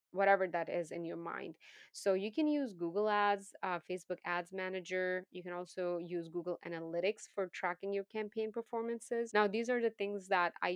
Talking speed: 190 wpm